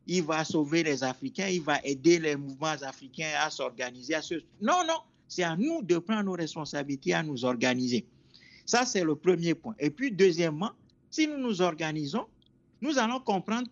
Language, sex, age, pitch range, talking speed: German, male, 50-69, 150-220 Hz, 185 wpm